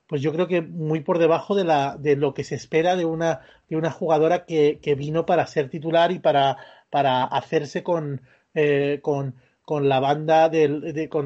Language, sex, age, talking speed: English, male, 30-49, 195 wpm